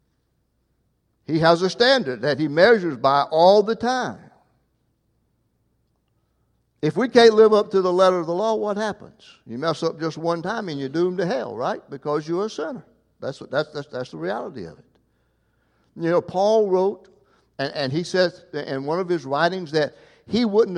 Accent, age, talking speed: American, 60-79, 190 wpm